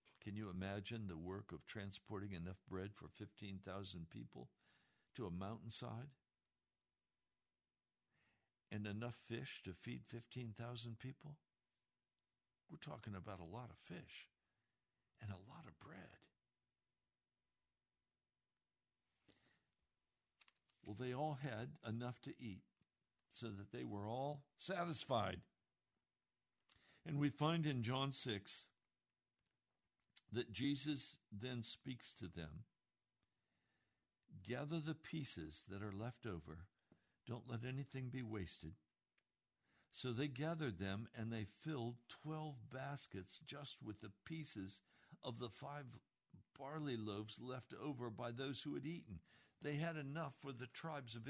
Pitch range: 100-145 Hz